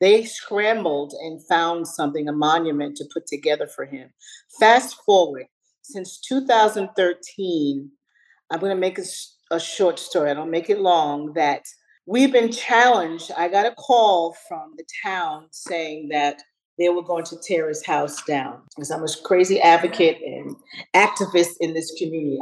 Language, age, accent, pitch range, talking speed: English, 40-59, American, 160-210 Hz, 160 wpm